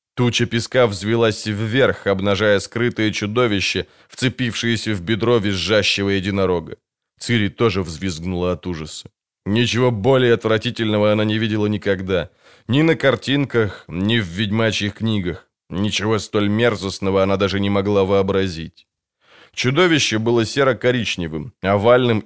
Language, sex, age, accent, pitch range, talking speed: Ukrainian, male, 20-39, native, 100-125 Hz, 115 wpm